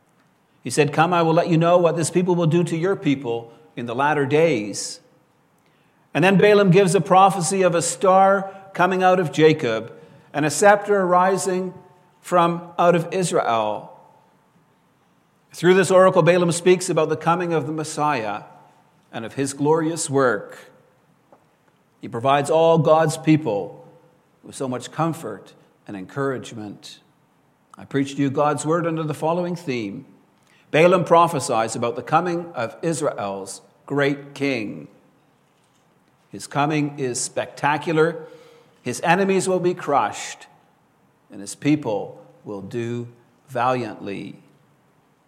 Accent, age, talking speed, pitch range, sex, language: American, 50-69, 135 wpm, 140-175 Hz, male, English